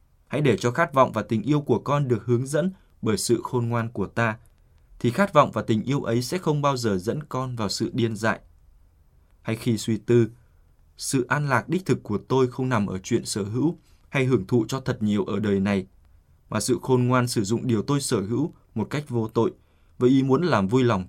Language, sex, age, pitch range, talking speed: Vietnamese, male, 20-39, 100-130 Hz, 235 wpm